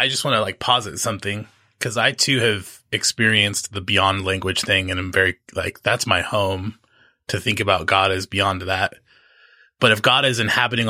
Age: 20-39